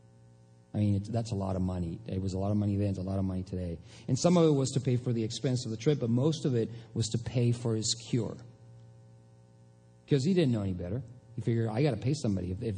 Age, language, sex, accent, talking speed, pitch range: 40-59, English, male, American, 265 wpm, 90-115 Hz